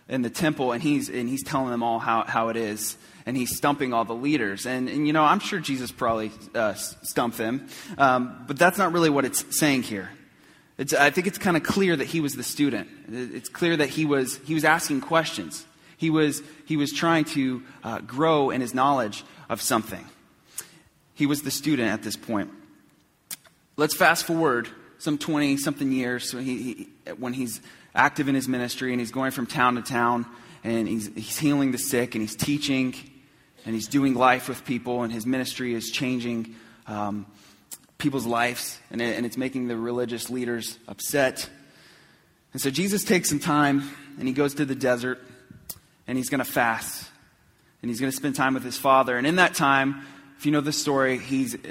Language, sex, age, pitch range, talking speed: English, male, 20-39, 120-145 Hz, 195 wpm